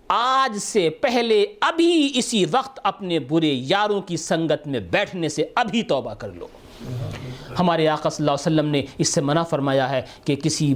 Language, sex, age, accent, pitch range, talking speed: English, male, 50-69, Indian, 145-215 Hz, 160 wpm